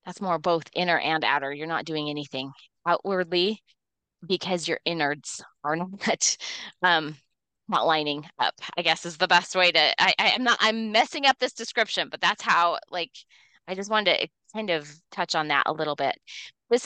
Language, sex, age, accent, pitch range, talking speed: English, female, 20-39, American, 160-205 Hz, 190 wpm